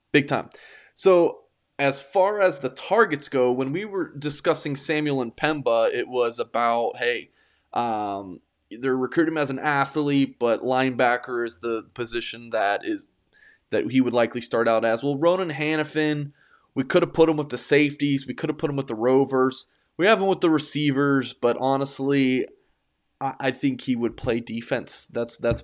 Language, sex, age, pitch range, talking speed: English, male, 20-39, 115-150 Hz, 175 wpm